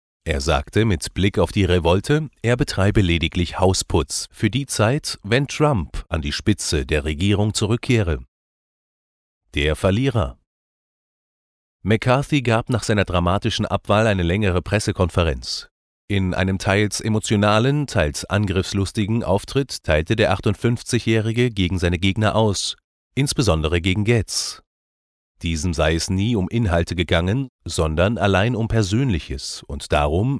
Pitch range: 85-115 Hz